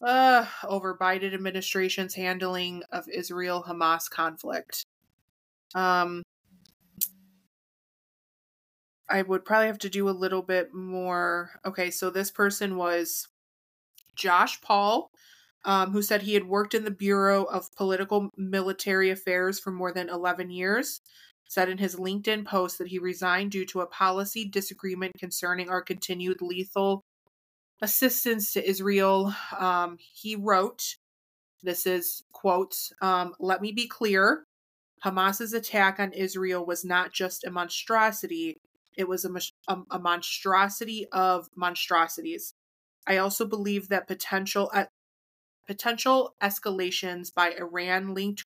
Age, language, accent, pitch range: 20-39, English, American, 180-200 Hz